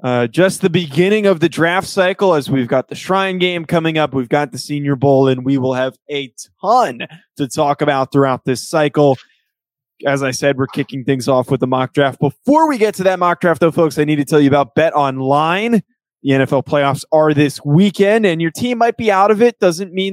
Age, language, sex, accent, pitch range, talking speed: 20-39, English, male, American, 135-170 Hz, 230 wpm